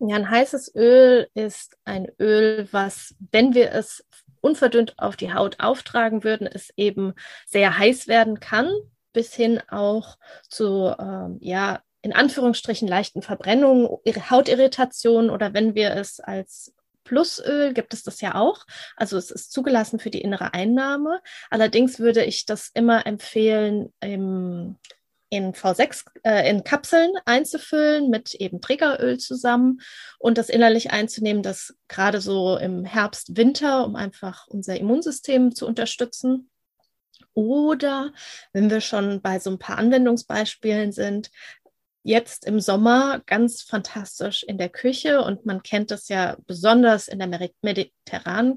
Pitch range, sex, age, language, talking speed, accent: 200-250 Hz, female, 20-39, German, 140 wpm, German